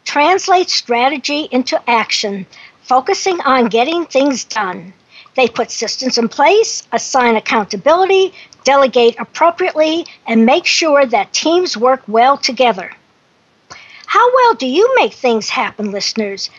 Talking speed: 125 wpm